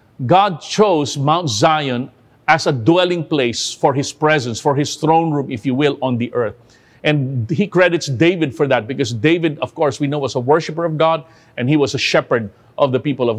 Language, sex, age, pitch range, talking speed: English, male, 50-69, 130-165 Hz, 210 wpm